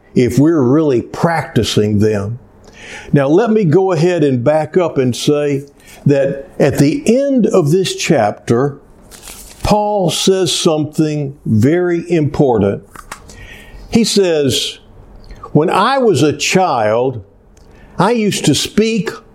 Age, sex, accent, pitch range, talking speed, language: 60-79, male, American, 125-180 Hz, 120 wpm, English